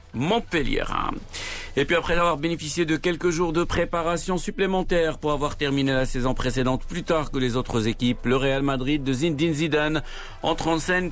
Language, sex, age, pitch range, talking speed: Arabic, male, 50-69, 115-150 Hz, 180 wpm